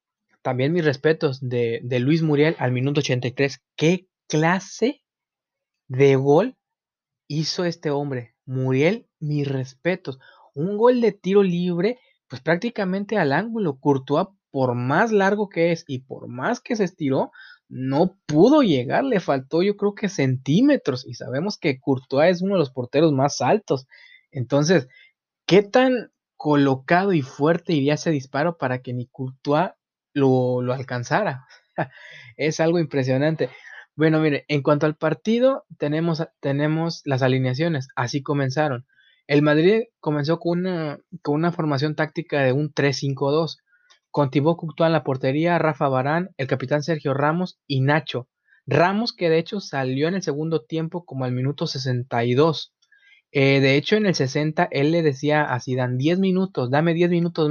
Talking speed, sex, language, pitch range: 155 wpm, male, Spanish, 135-175 Hz